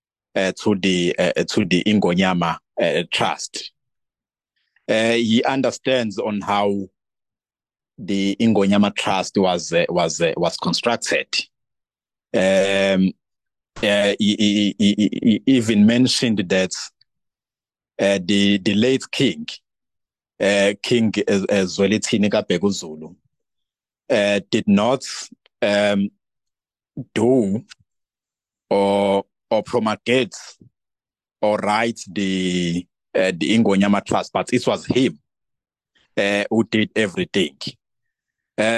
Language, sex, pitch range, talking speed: English, male, 100-115 Hz, 105 wpm